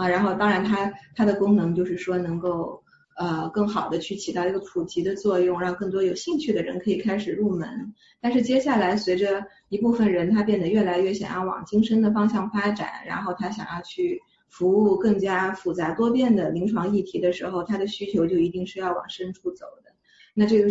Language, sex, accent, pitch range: Chinese, female, native, 180-215 Hz